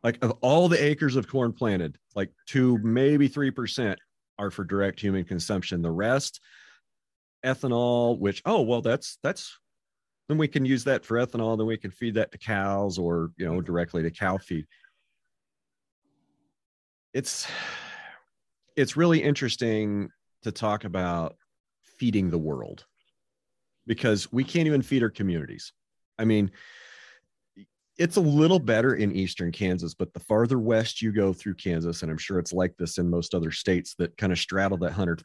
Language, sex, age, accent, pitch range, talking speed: English, male, 40-59, American, 90-120 Hz, 165 wpm